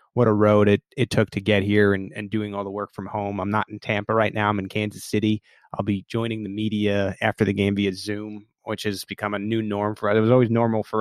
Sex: male